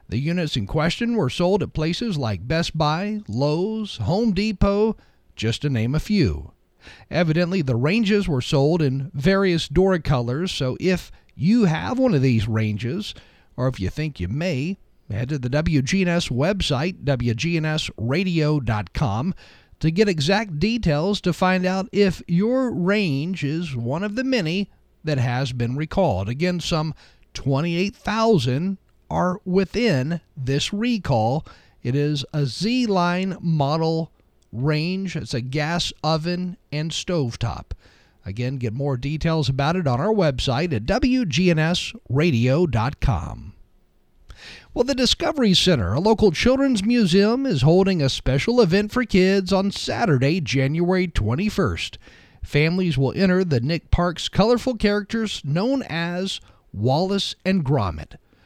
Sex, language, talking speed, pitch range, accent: male, English, 130 wpm, 135-195 Hz, American